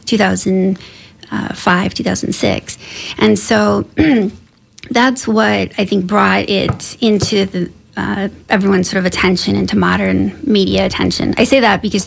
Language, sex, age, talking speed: English, female, 30-49, 125 wpm